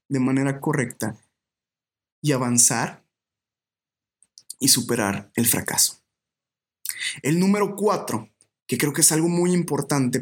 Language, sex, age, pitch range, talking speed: Spanish, male, 20-39, 130-165 Hz, 110 wpm